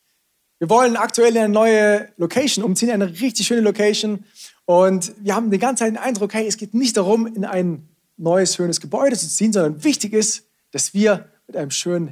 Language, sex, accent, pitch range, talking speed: German, male, German, 160-220 Hz, 200 wpm